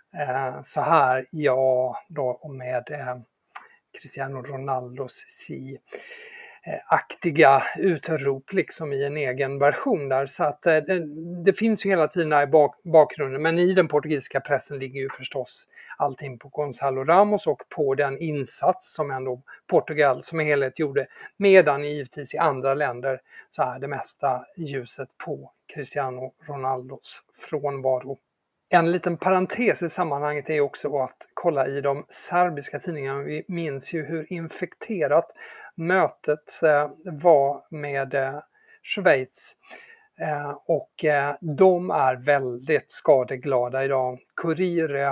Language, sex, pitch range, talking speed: English, male, 135-170 Hz, 130 wpm